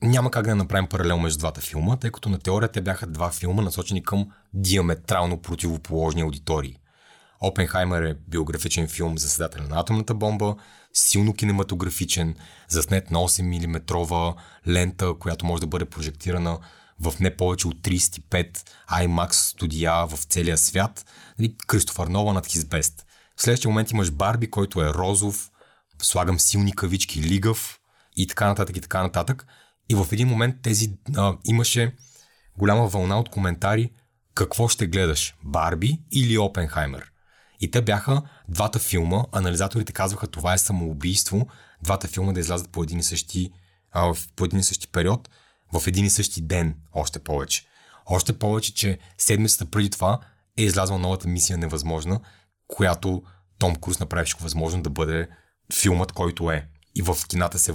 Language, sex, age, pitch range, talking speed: Bulgarian, male, 30-49, 85-105 Hz, 150 wpm